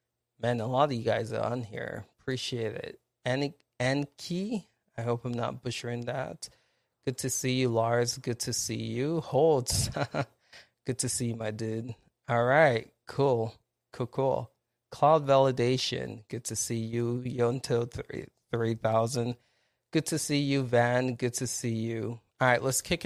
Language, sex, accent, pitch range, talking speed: English, male, American, 120-140 Hz, 155 wpm